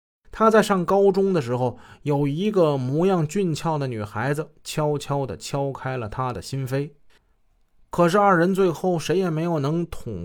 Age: 20-39